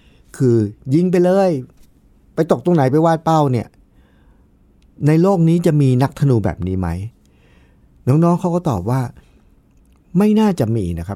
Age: 60-79